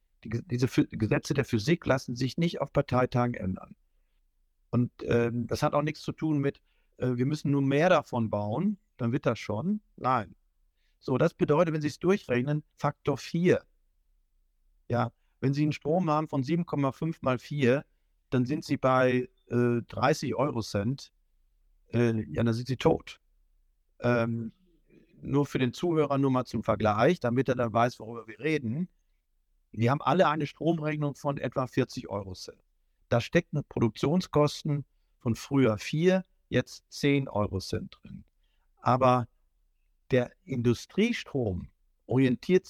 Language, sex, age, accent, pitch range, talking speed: German, male, 50-69, German, 105-150 Hz, 145 wpm